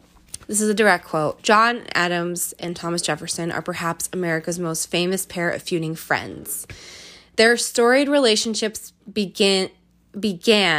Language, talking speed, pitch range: English, 130 wpm, 170-220 Hz